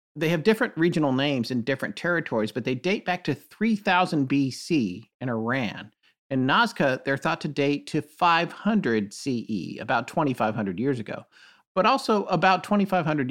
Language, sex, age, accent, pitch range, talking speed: English, male, 50-69, American, 130-185 Hz, 155 wpm